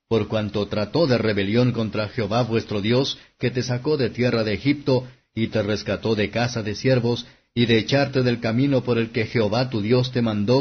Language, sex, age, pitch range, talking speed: Spanish, male, 50-69, 110-130 Hz, 205 wpm